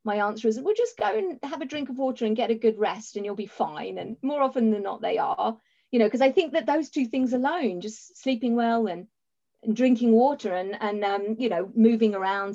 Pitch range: 185-235 Hz